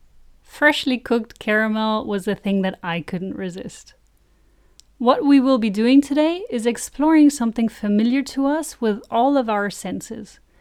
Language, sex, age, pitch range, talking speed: English, female, 30-49, 195-250 Hz, 155 wpm